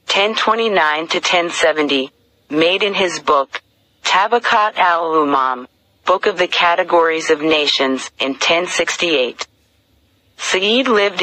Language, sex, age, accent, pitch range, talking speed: English, female, 40-59, American, 135-185 Hz, 85 wpm